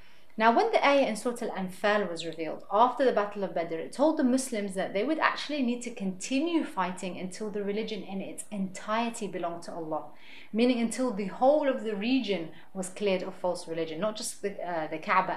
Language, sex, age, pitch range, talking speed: English, female, 30-49, 185-235 Hz, 210 wpm